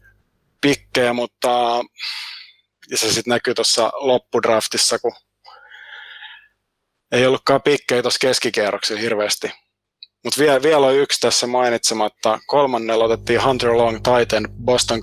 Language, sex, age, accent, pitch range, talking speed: Finnish, male, 20-39, native, 110-125 Hz, 105 wpm